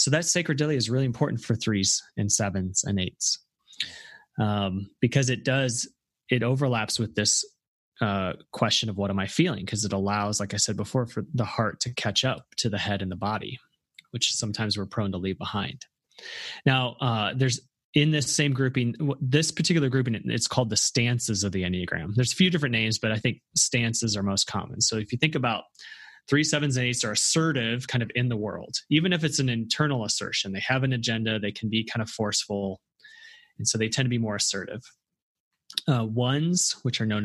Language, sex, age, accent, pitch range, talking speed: English, male, 30-49, American, 105-135 Hz, 205 wpm